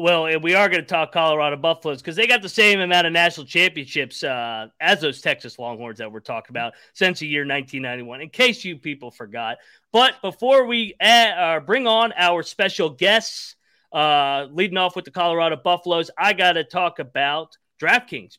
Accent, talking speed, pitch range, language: American, 195 wpm, 150-195 Hz, English